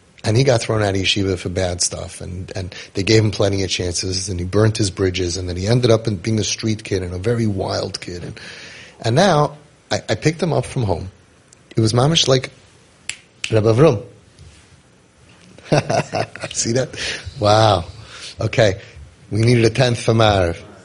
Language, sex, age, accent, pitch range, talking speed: English, male, 30-49, American, 100-120 Hz, 180 wpm